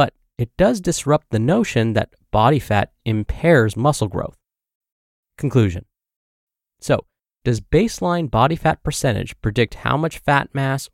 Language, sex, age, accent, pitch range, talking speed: English, male, 20-39, American, 110-150 Hz, 125 wpm